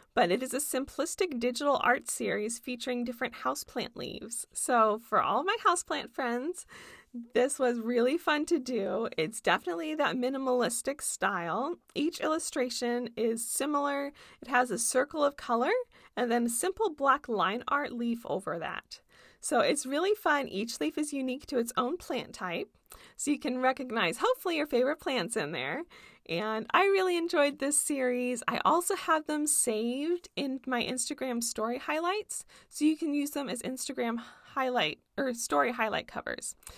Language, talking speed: English, 165 wpm